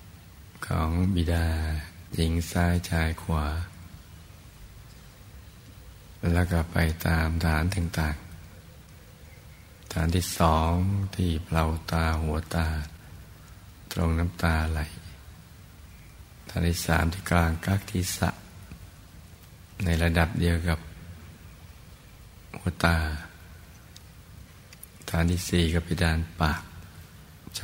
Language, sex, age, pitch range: Thai, male, 60-79, 80-90 Hz